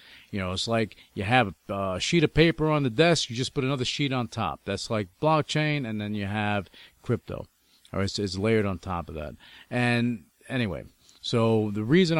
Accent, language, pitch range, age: American, English, 95-130 Hz, 40-59